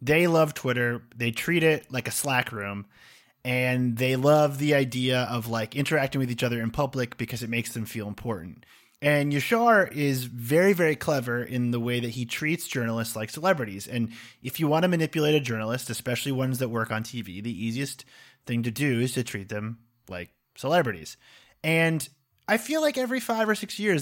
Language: English